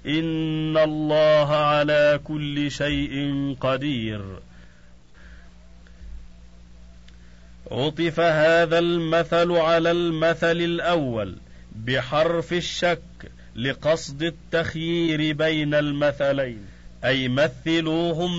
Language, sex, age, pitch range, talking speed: Arabic, male, 40-59, 130-165 Hz, 65 wpm